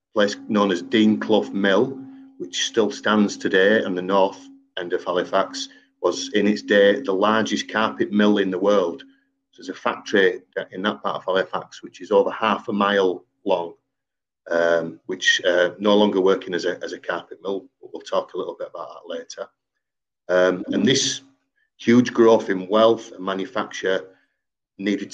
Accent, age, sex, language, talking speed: British, 40-59, male, English, 175 wpm